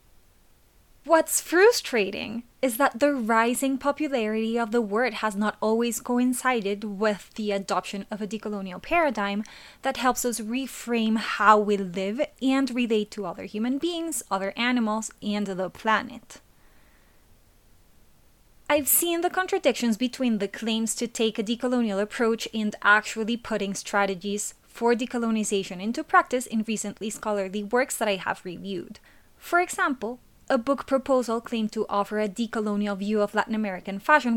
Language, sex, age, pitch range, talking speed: English, female, 20-39, 205-250 Hz, 145 wpm